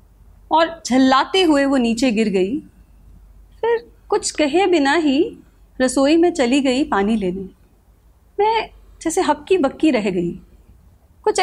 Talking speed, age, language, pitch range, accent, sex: 130 wpm, 30-49, Hindi, 230-330 Hz, native, female